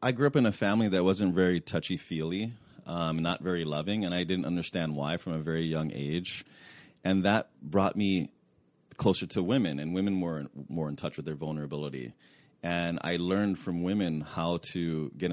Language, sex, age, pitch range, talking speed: English, male, 30-49, 75-90 Hz, 190 wpm